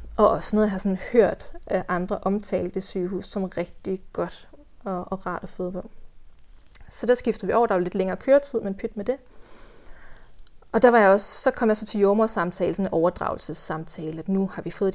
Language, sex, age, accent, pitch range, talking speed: Danish, female, 30-49, native, 180-215 Hz, 210 wpm